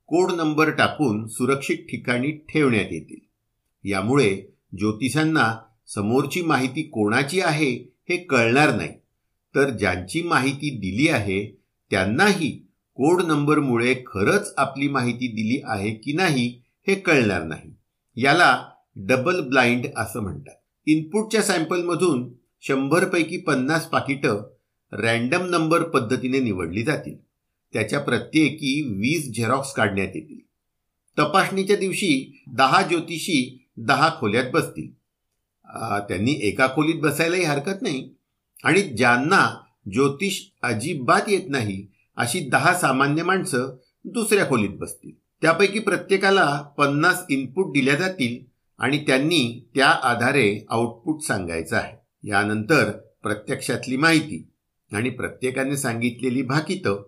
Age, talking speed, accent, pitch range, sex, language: 50-69, 100 wpm, native, 115-165 Hz, male, Marathi